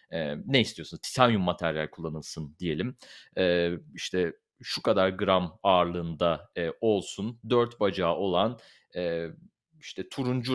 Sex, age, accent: male, 40-59, native